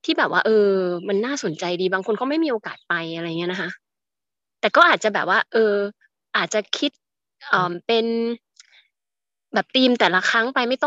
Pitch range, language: 195-255 Hz, Thai